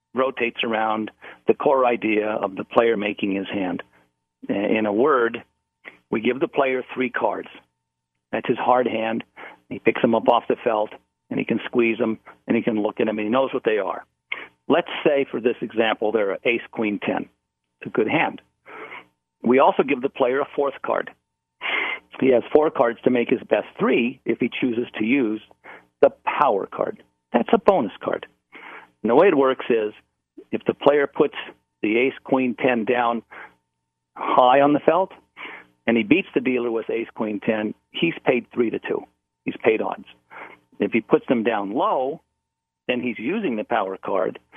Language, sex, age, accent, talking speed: English, male, 50-69, American, 185 wpm